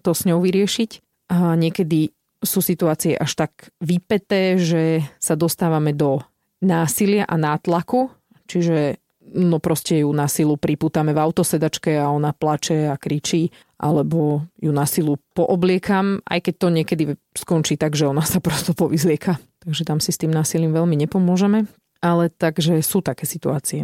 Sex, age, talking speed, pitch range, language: female, 30-49, 155 wpm, 155-185 Hz, Slovak